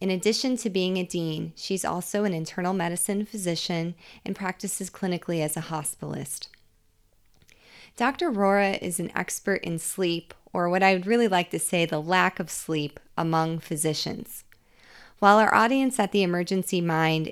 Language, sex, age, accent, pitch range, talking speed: English, female, 20-39, American, 170-205 Hz, 155 wpm